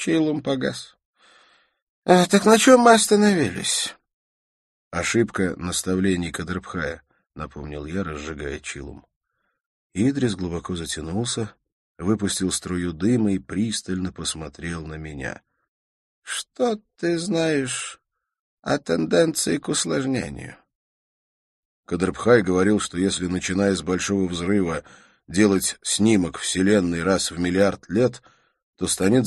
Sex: male